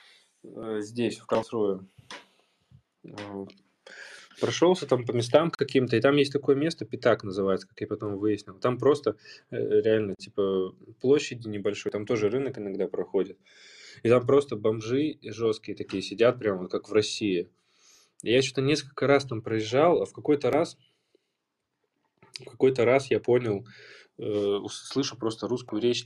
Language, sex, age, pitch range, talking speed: Russian, male, 20-39, 100-125 Hz, 145 wpm